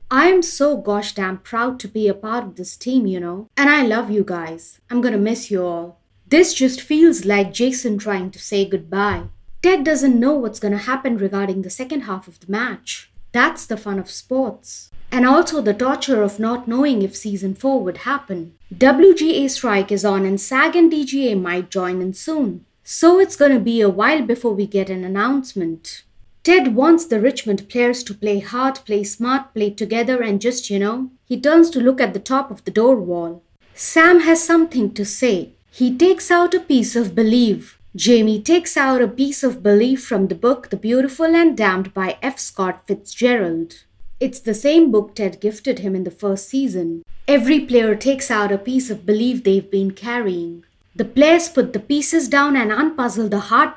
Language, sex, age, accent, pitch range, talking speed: English, female, 30-49, Indian, 200-270 Hz, 195 wpm